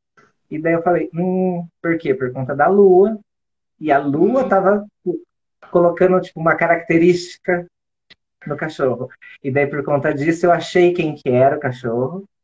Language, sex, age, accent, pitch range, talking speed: Portuguese, male, 20-39, Brazilian, 135-185 Hz, 160 wpm